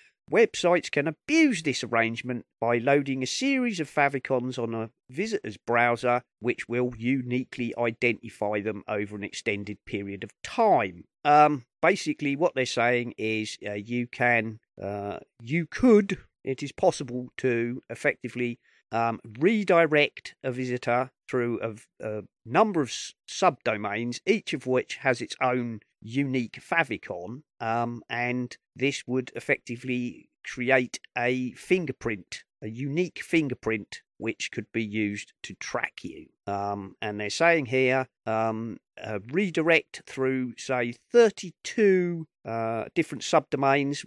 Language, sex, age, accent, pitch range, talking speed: English, male, 40-59, British, 115-145 Hz, 130 wpm